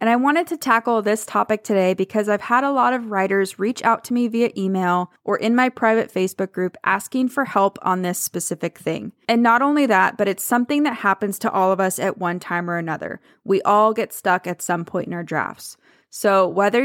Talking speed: 230 wpm